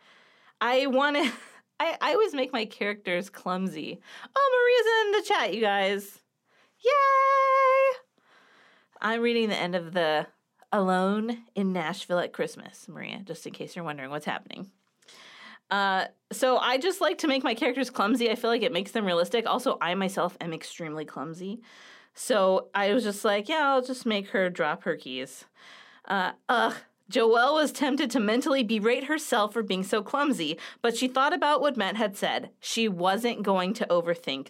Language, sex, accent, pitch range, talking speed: English, female, American, 190-260 Hz, 170 wpm